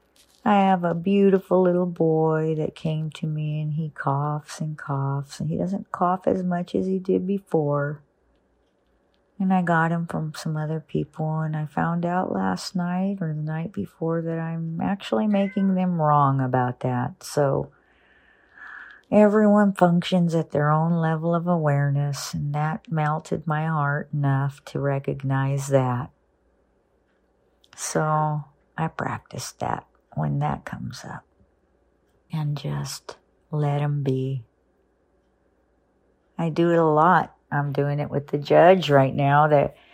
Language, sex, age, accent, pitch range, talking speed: English, female, 50-69, American, 135-165 Hz, 145 wpm